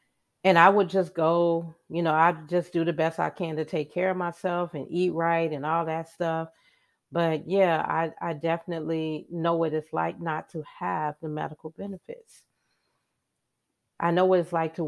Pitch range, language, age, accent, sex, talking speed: 150-175 Hz, English, 40-59, American, female, 190 wpm